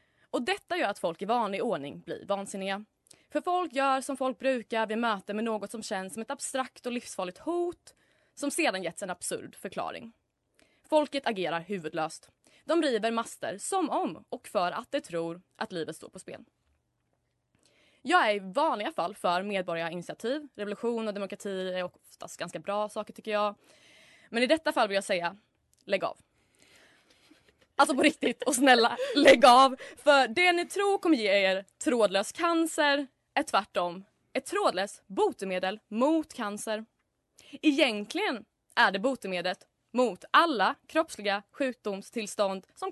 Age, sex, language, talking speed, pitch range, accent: 20-39, female, Swedish, 155 wpm, 200-290 Hz, native